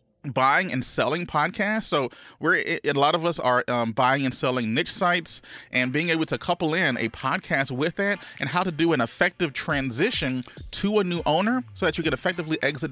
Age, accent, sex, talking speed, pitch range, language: 30-49, American, male, 210 wpm, 120-165 Hz, English